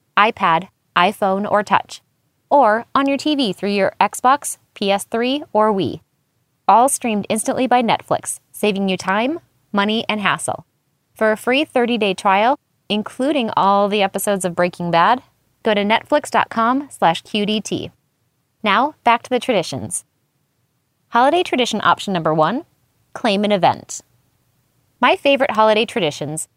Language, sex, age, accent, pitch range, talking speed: English, female, 20-39, American, 175-245 Hz, 130 wpm